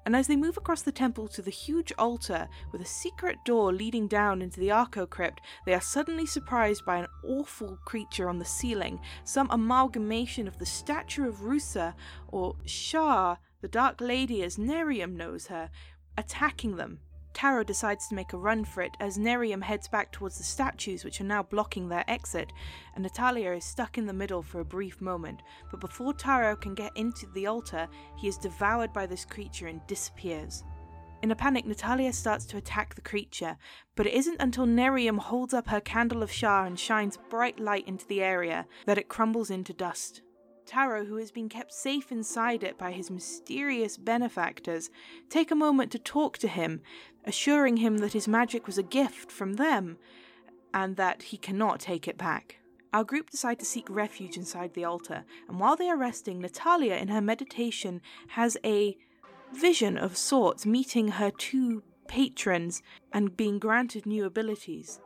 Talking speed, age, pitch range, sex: 185 wpm, 10-29, 185-245 Hz, female